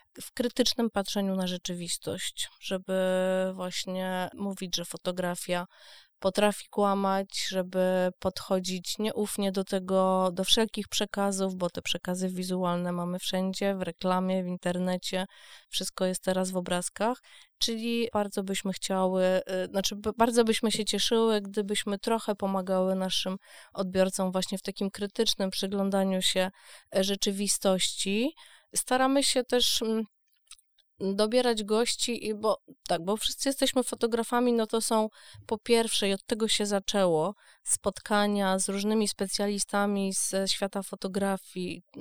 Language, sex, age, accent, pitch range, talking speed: Polish, female, 20-39, native, 185-215 Hz, 120 wpm